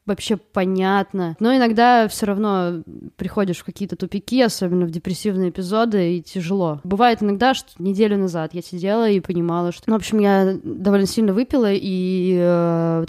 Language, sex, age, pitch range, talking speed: Russian, female, 20-39, 180-215 Hz, 160 wpm